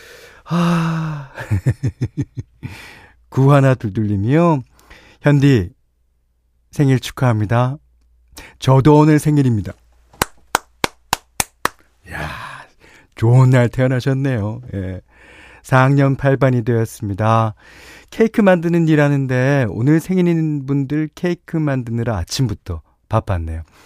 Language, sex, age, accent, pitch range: Korean, male, 40-59, native, 100-145 Hz